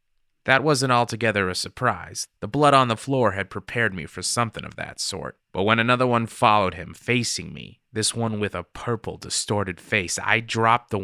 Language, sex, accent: English, male, American